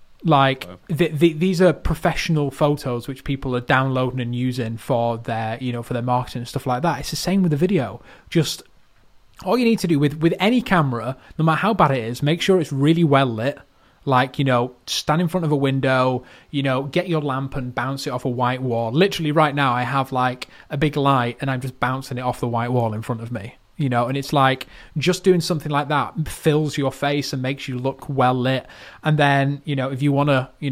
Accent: British